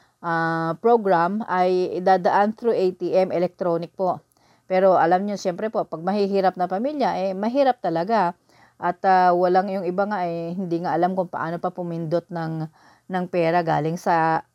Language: English